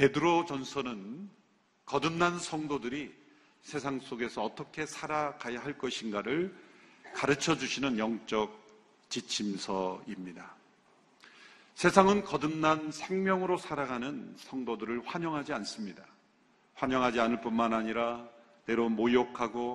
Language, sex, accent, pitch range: Korean, male, native, 120-155 Hz